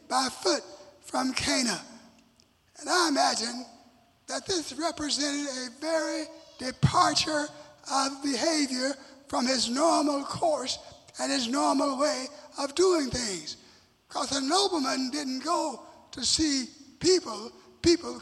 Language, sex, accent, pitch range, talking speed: English, male, American, 265-320 Hz, 115 wpm